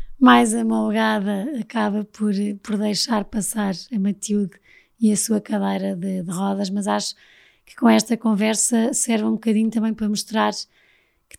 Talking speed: 155 wpm